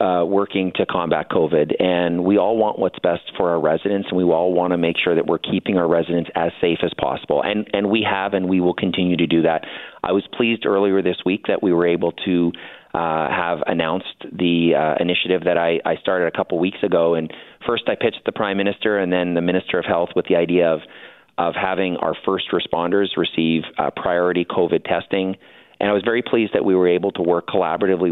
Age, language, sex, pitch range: 30-49, English, male, 85-95 Hz